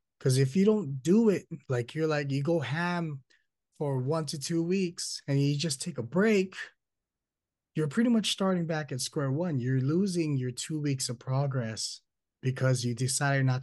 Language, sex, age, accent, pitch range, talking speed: English, male, 20-39, American, 135-170 Hz, 185 wpm